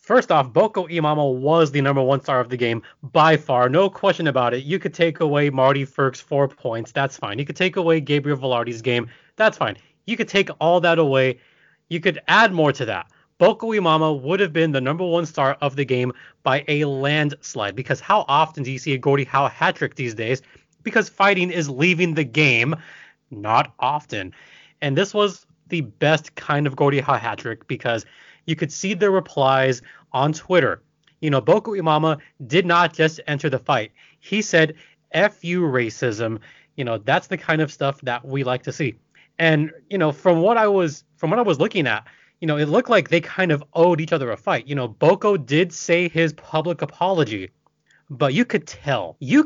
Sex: male